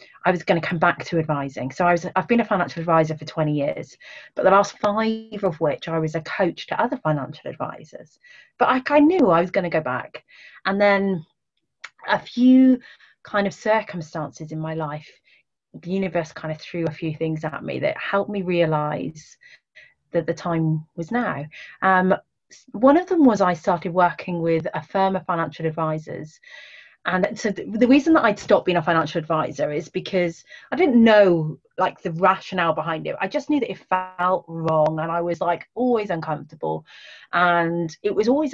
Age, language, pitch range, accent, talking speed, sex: 30-49, English, 160-210 Hz, British, 195 wpm, female